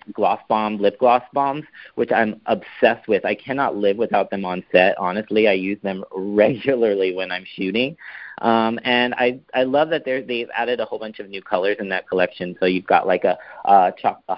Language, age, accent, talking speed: English, 30-49, American, 200 wpm